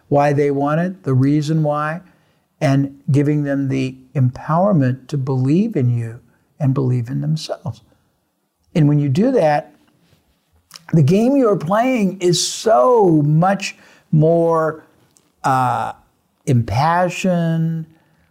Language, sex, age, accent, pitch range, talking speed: English, male, 60-79, American, 130-165 Hz, 115 wpm